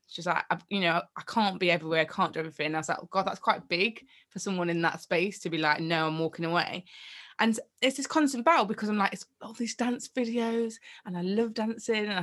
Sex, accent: female, British